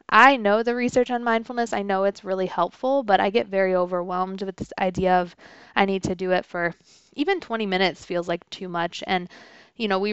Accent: American